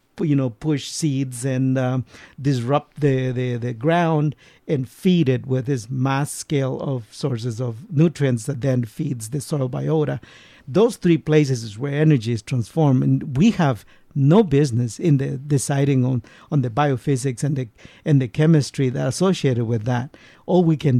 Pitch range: 130-160 Hz